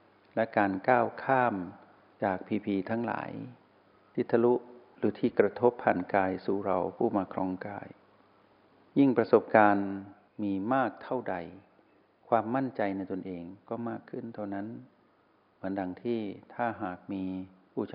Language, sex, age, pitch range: Thai, male, 60-79, 95-120 Hz